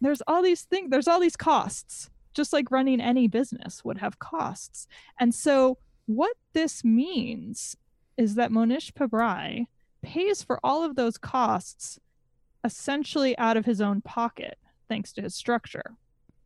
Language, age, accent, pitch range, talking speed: English, 20-39, American, 215-245 Hz, 150 wpm